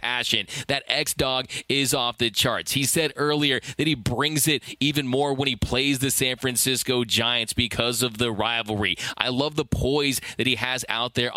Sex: male